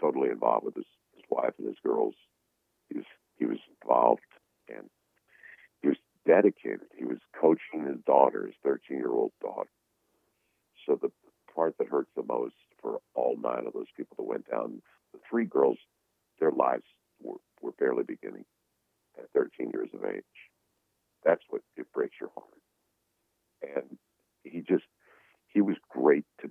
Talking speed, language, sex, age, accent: 155 wpm, English, male, 50-69, American